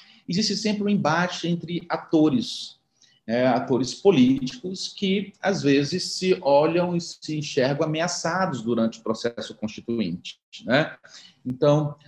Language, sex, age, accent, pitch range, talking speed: Portuguese, male, 40-59, Brazilian, 130-180 Hz, 120 wpm